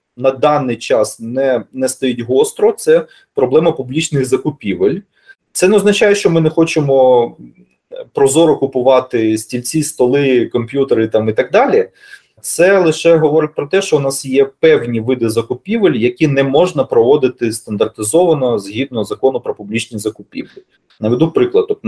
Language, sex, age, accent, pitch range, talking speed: Ukrainian, male, 20-39, native, 120-185 Hz, 145 wpm